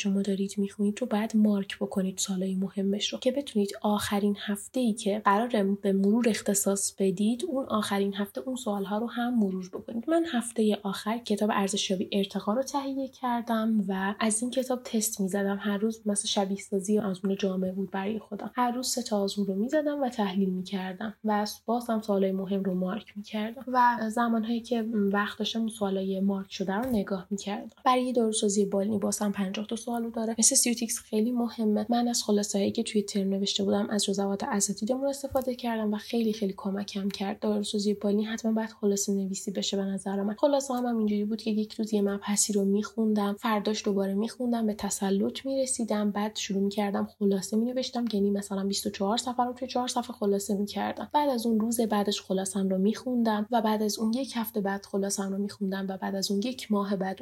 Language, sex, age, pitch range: Persian, female, 10-29, 200-230 Hz